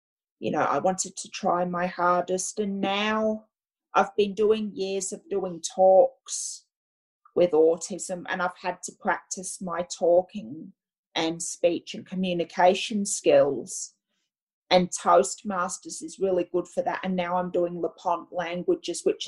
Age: 30-49